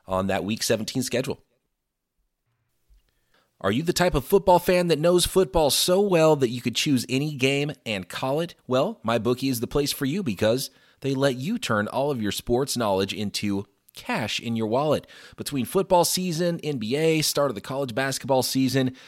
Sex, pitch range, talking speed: male, 110-160 Hz, 185 wpm